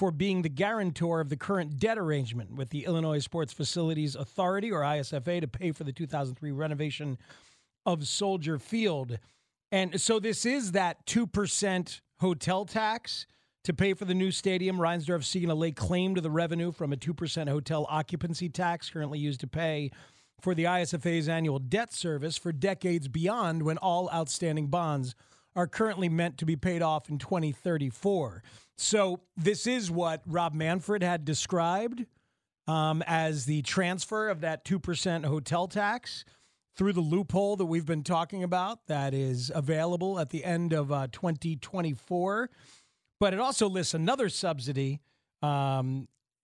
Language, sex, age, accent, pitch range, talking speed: English, male, 40-59, American, 150-185 Hz, 160 wpm